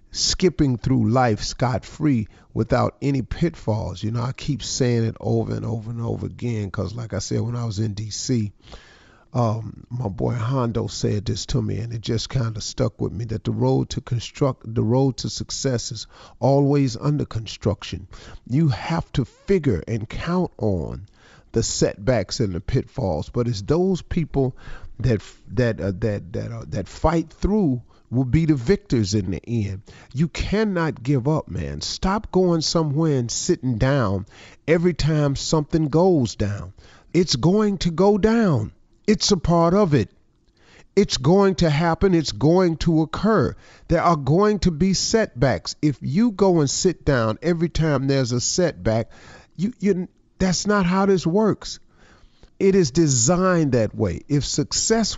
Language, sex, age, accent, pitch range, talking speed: English, male, 40-59, American, 115-170 Hz, 165 wpm